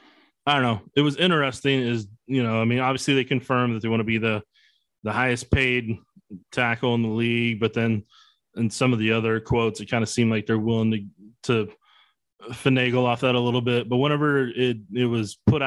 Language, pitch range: English, 115-150 Hz